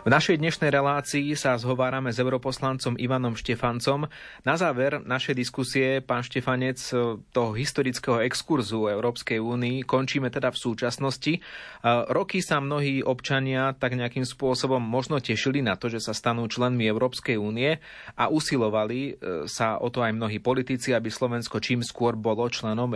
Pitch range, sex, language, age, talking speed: 115-140 Hz, male, Slovak, 30-49, 145 wpm